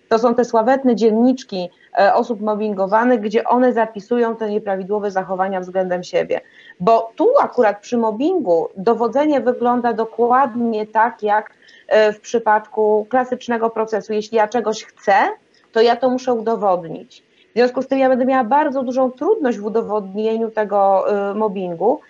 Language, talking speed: Polish, 140 wpm